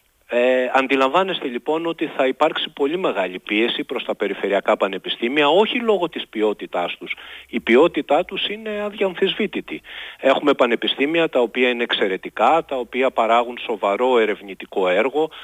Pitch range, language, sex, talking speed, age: 115-180 Hz, Greek, male, 135 wpm, 40-59